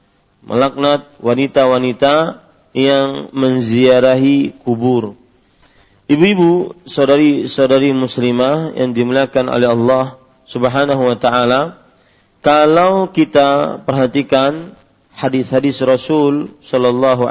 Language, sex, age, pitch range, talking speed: Malay, male, 40-59, 125-145 Hz, 75 wpm